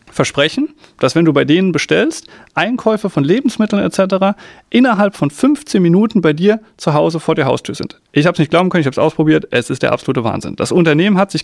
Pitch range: 150-205 Hz